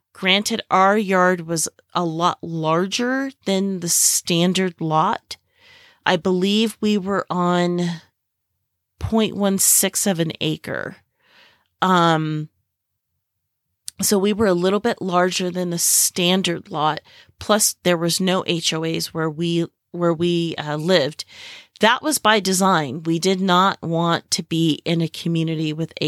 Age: 30-49